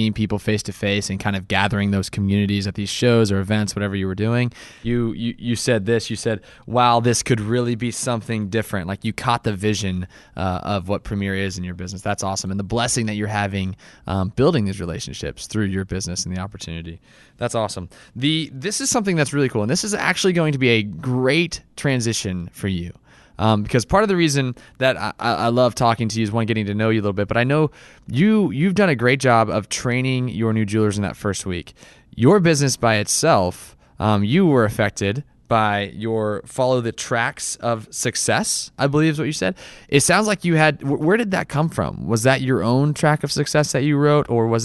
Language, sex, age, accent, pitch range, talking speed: English, male, 20-39, American, 100-130 Hz, 225 wpm